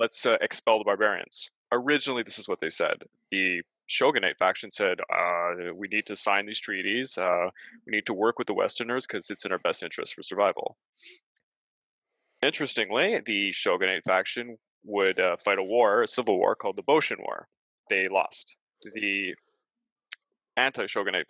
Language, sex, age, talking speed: English, male, 20-39, 165 wpm